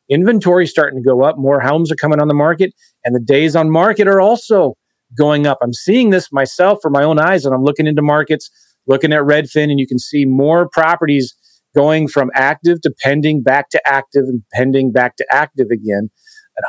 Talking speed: 210 wpm